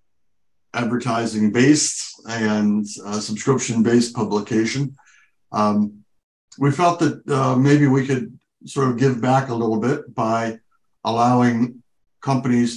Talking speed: 115 wpm